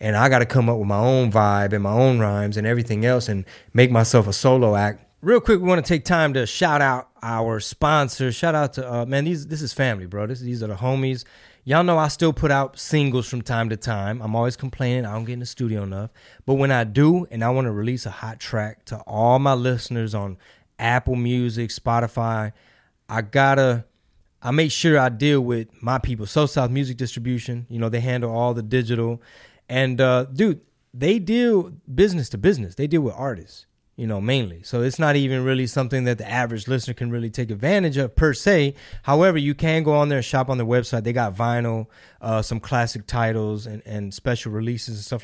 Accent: American